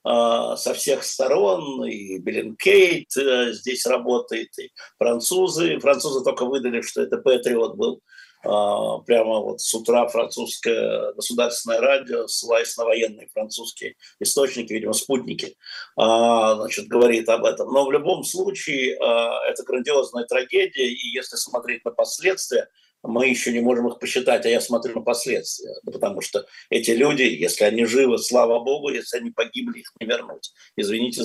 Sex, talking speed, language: male, 140 wpm, Russian